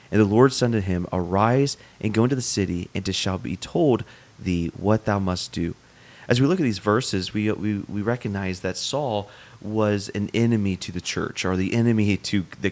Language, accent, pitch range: English, American, 95-115 Hz